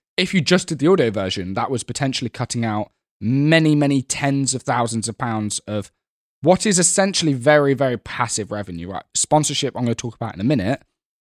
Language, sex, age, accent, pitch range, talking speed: English, male, 10-29, British, 105-140 Hz, 200 wpm